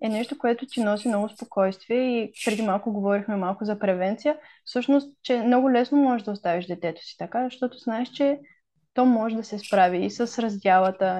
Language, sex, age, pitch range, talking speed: Bulgarian, female, 20-39, 200-250 Hz, 190 wpm